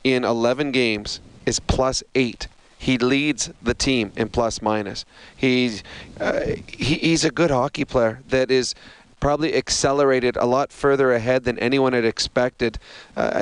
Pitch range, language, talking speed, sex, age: 120-135 Hz, English, 150 wpm, male, 30-49